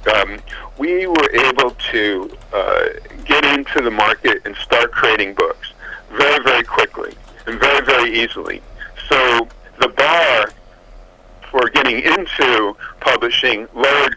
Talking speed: 125 wpm